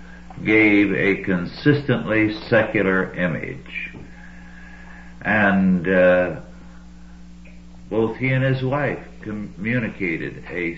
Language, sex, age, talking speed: English, male, 60-79, 80 wpm